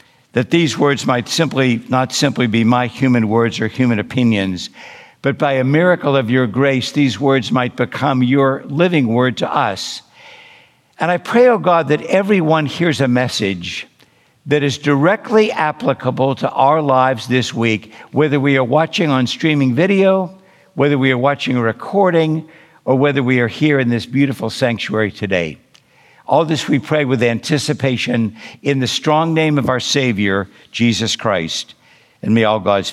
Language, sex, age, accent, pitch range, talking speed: English, male, 60-79, American, 120-155 Hz, 170 wpm